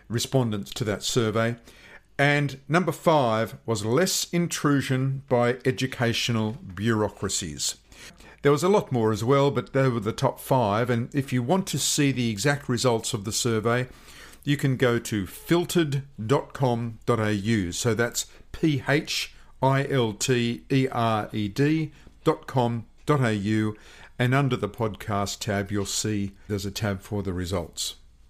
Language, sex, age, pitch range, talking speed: English, male, 50-69, 110-140 Hz, 140 wpm